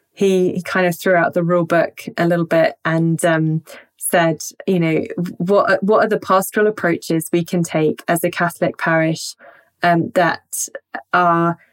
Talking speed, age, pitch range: 165 wpm, 20-39, 175-205 Hz